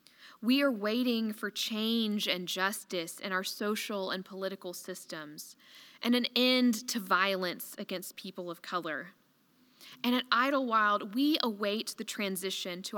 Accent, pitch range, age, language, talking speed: American, 190-245 Hz, 10-29, English, 140 wpm